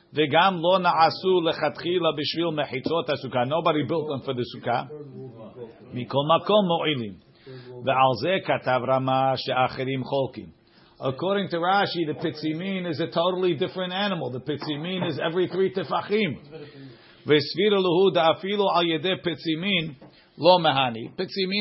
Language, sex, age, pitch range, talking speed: English, male, 50-69, 135-180 Hz, 65 wpm